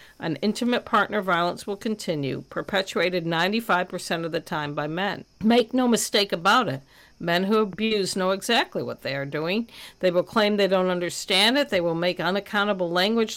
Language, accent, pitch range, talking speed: English, American, 170-220 Hz, 175 wpm